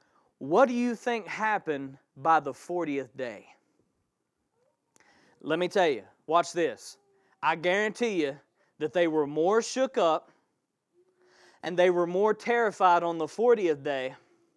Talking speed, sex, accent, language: 135 wpm, male, American, English